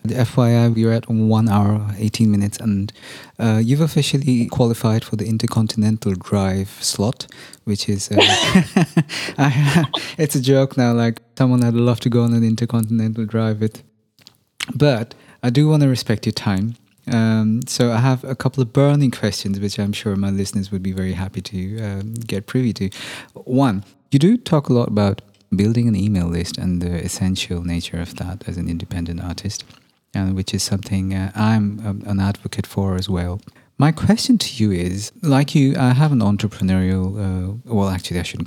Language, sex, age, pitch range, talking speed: English, male, 30-49, 100-125 Hz, 180 wpm